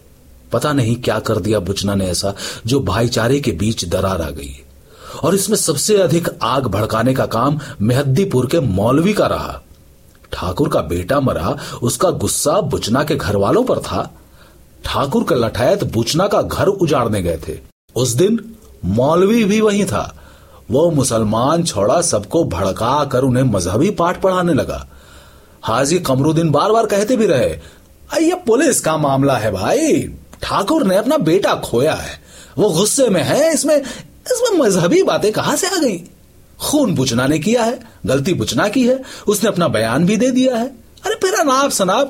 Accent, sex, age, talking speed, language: native, male, 40-59, 160 wpm, Hindi